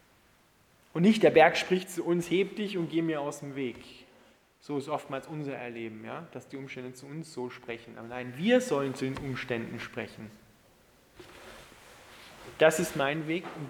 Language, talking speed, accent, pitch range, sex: German, 170 wpm, German, 125-165 Hz, male